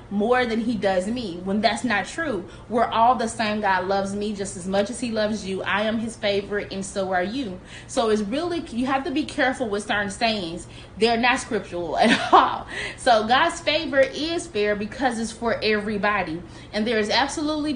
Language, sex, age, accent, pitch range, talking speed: English, female, 20-39, American, 200-260 Hz, 205 wpm